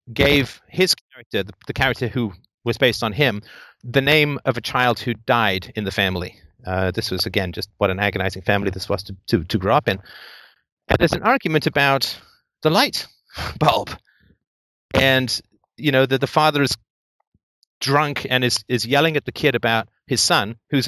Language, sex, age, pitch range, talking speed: English, male, 40-59, 110-150 Hz, 185 wpm